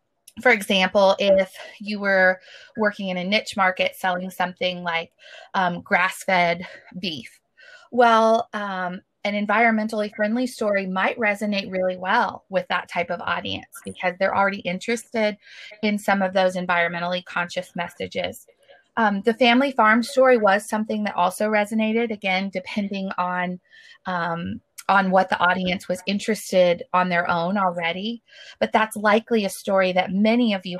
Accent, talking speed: American, 150 wpm